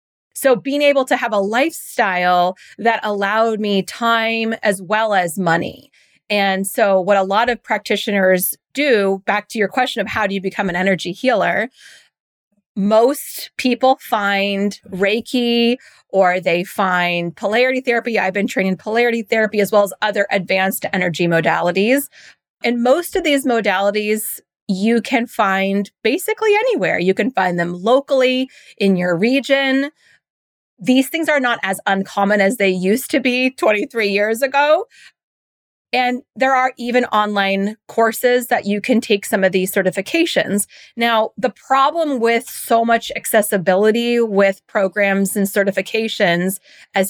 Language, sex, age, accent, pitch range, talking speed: English, female, 30-49, American, 195-250 Hz, 145 wpm